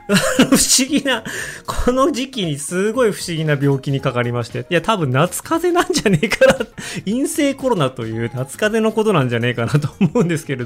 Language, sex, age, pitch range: Japanese, male, 20-39, 110-175 Hz